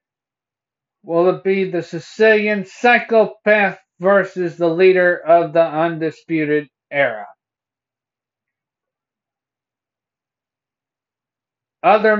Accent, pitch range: American, 160-200 Hz